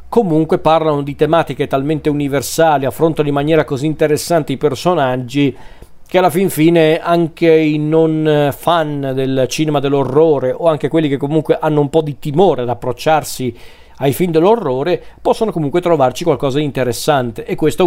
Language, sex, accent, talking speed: Italian, male, native, 160 wpm